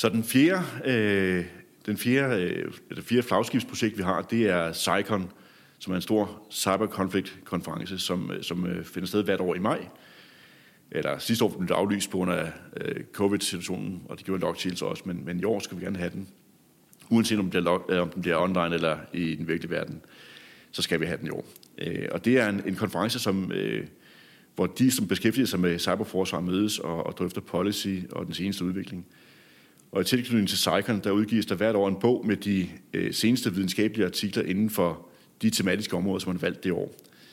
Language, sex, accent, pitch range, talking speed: Danish, male, native, 90-105 Hz, 200 wpm